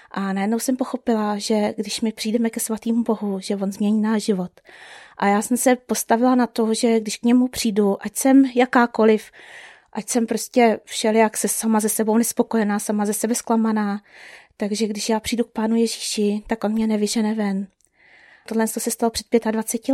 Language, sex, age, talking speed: Czech, female, 20-39, 185 wpm